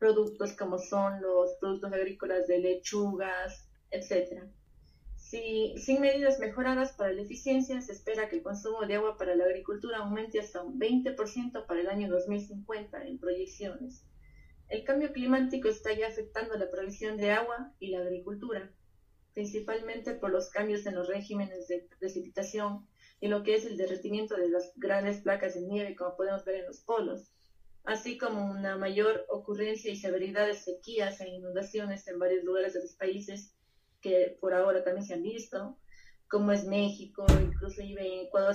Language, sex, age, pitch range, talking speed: Spanish, female, 20-39, 190-220 Hz, 165 wpm